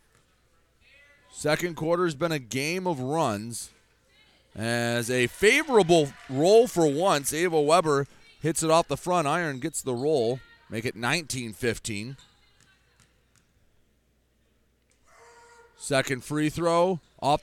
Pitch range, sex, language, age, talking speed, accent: 140-175 Hz, male, English, 30-49, 110 wpm, American